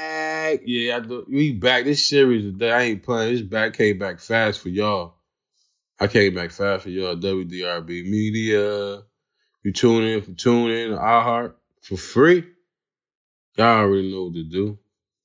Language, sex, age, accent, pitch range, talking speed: English, male, 20-39, American, 90-115 Hz, 155 wpm